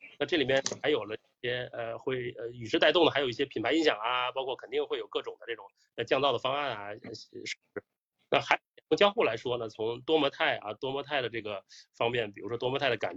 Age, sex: 30-49, male